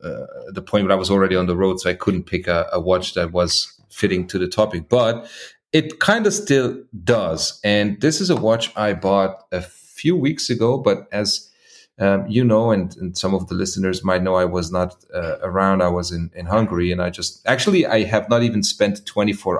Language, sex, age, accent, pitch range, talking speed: English, male, 30-49, German, 90-110 Hz, 225 wpm